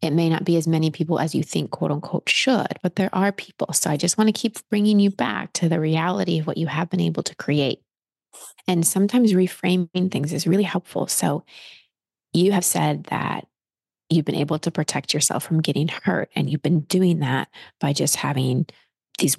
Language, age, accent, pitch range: English, 30-49, American, 150-185 Hz